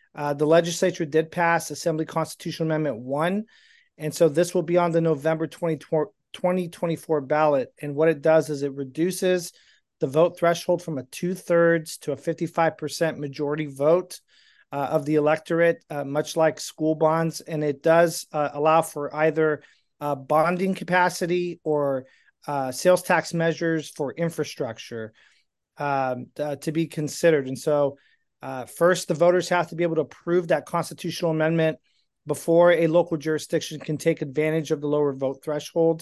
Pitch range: 150-170 Hz